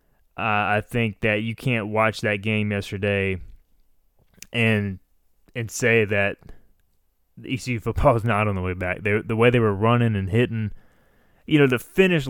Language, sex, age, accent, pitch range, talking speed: English, male, 20-39, American, 100-120 Hz, 165 wpm